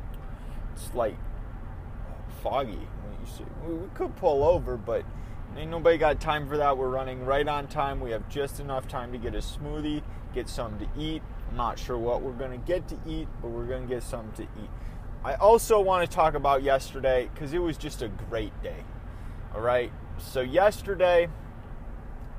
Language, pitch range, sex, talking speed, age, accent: English, 115-165 Hz, male, 180 wpm, 30-49, American